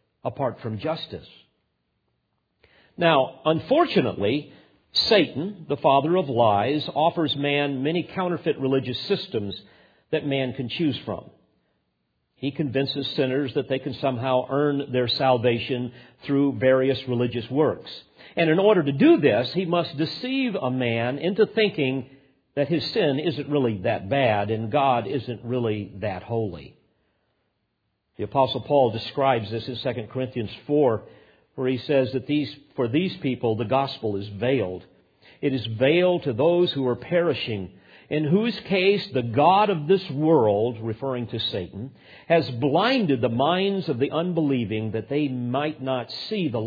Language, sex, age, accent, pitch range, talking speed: English, male, 50-69, American, 120-160 Hz, 145 wpm